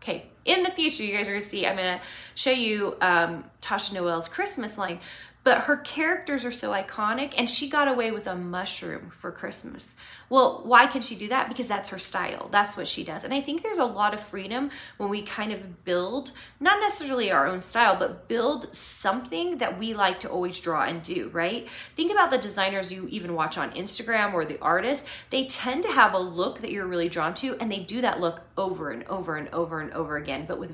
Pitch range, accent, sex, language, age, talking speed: 175-255 Hz, American, female, English, 30-49, 225 wpm